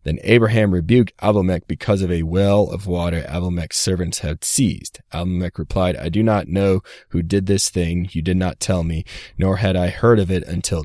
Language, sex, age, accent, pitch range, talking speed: English, male, 30-49, American, 85-105 Hz, 200 wpm